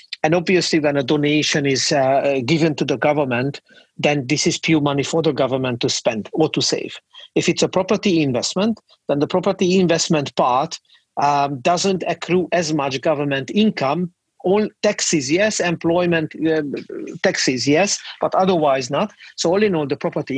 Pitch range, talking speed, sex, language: 140-175 Hz, 170 wpm, male, English